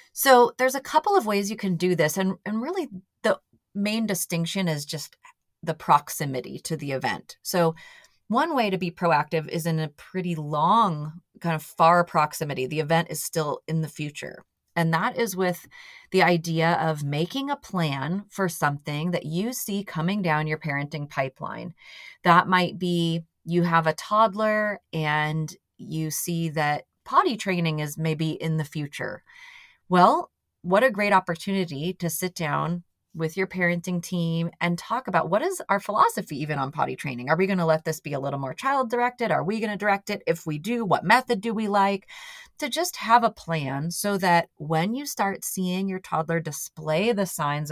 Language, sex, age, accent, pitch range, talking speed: English, female, 30-49, American, 160-210 Hz, 185 wpm